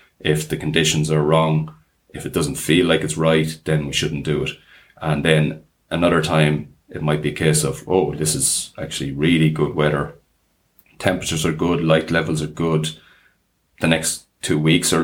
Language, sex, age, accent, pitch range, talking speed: English, male, 30-49, Irish, 75-80 Hz, 185 wpm